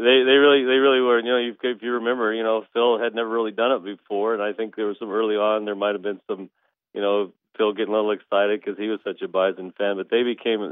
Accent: American